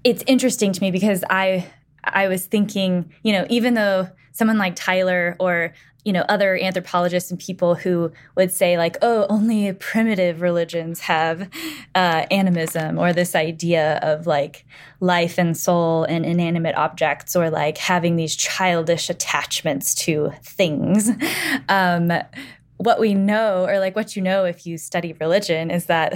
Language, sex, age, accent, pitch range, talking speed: English, female, 10-29, American, 155-190 Hz, 155 wpm